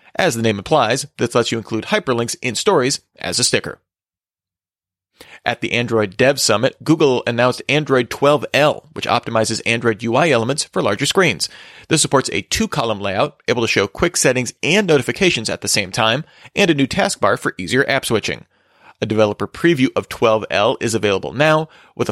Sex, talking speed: male, 175 wpm